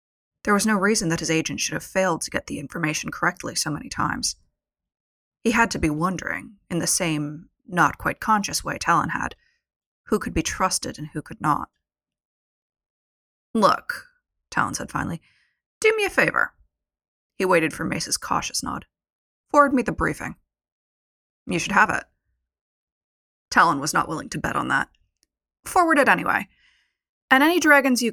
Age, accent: 30-49, American